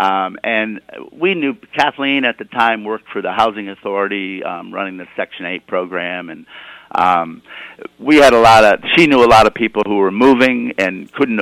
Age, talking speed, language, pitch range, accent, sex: 50-69, 190 wpm, English, 105-120 Hz, American, male